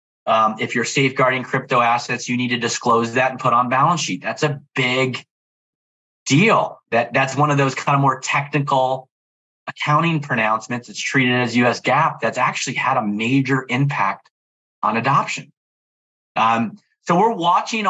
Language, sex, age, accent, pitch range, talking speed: English, male, 30-49, American, 115-150 Hz, 160 wpm